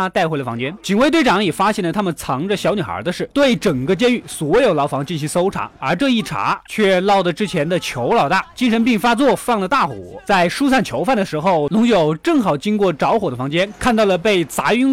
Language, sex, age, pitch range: Chinese, male, 20-39, 160-235 Hz